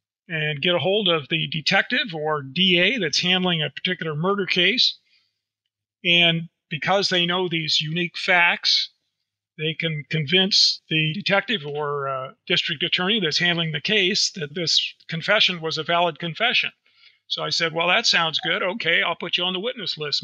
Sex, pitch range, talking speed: male, 165-225 Hz, 170 wpm